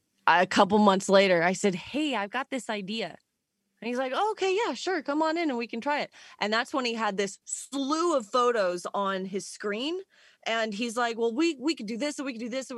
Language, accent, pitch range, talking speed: English, American, 195-270 Hz, 250 wpm